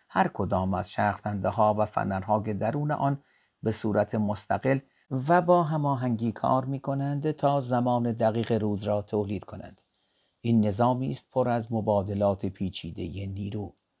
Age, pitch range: 50-69, 105-130 Hz